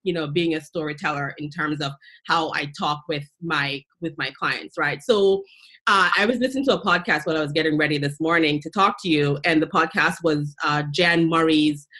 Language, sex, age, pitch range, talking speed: English, female, 30-49, 155-190 Hz, 215 wpm